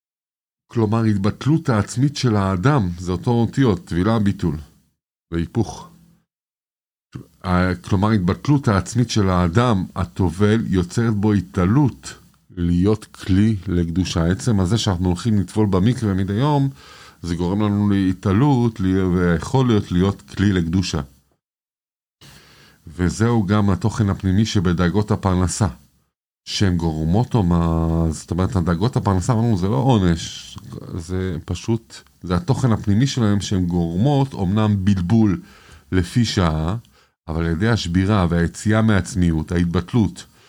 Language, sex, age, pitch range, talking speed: Hebrew, male, 50-69, 90-110 Hz, 115 wpm